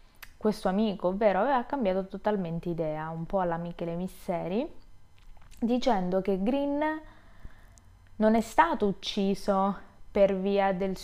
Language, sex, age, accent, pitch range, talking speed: Italian, female, 20-39, native, 185-230 Hz, 120 wpm